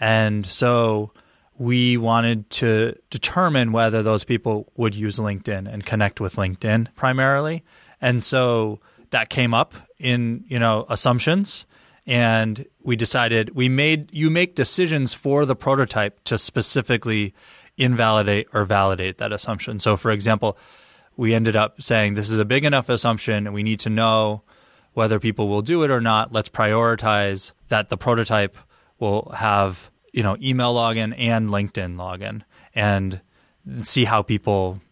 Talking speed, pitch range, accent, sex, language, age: 150 wpm, 105-120 Hz, American, male, English, 20-39